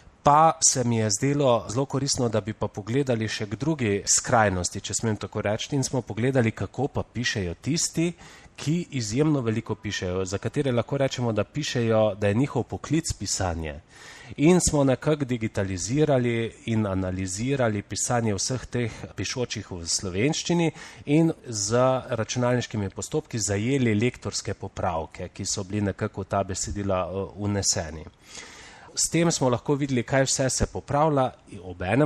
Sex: male